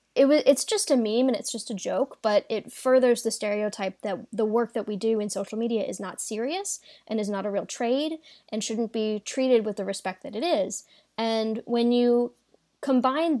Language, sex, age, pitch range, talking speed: English, female, 10-29, 205-250 Hz, 205 wpm